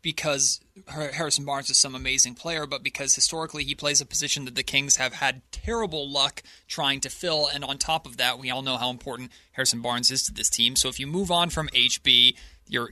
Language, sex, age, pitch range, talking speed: English, male, 30-49, 130-155 Hz, 225 wpm